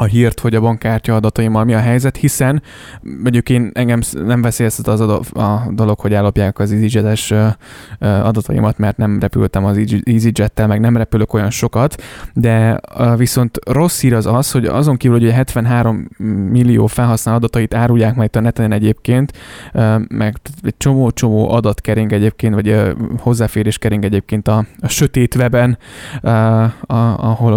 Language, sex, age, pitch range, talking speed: Hungarian, male, 20-39, 105-120 Hz, 140 wpm